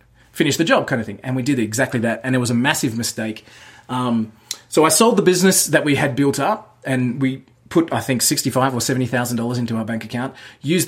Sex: male